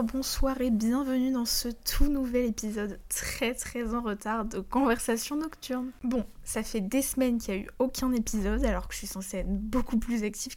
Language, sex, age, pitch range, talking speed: French, female, 10-29, 215-255 Hz, 200 wpm